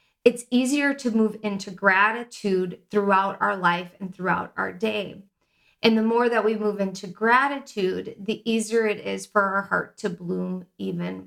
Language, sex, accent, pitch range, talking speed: English, female, American, 195-225 Hz, 165 wpm